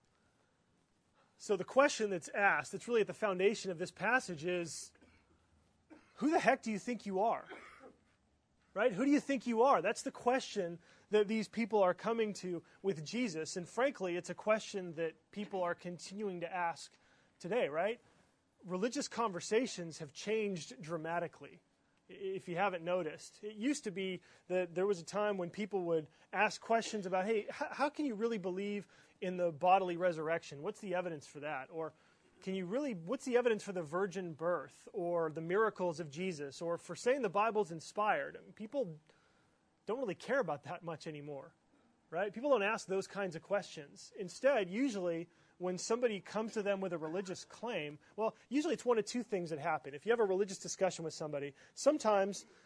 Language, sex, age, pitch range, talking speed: English, male, 30-49, 175-215 Hz, 180 wpm